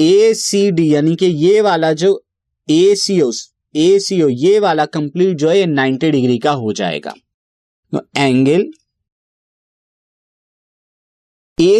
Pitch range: 145-195 Hz